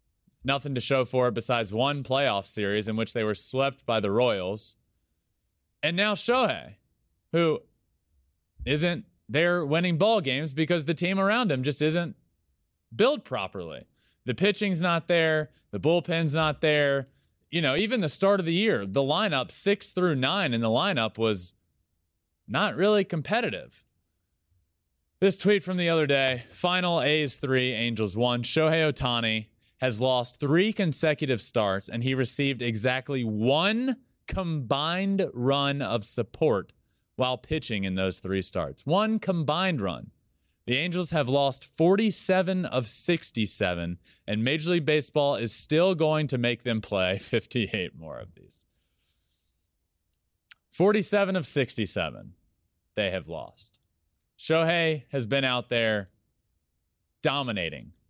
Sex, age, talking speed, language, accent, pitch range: male, 20-39, 135 wpm, English, American, 105-165 Hz